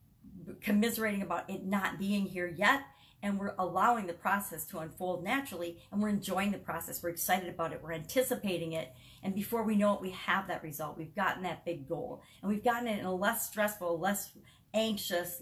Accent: American